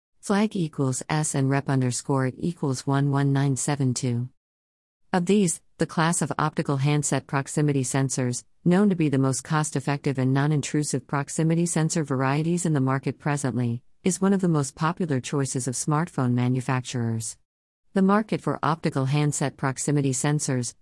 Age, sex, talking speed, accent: 50-69, female, 140 wpm, American